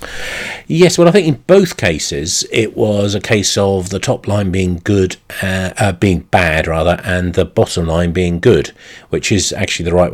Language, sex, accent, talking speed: English, male, British, 195 wpm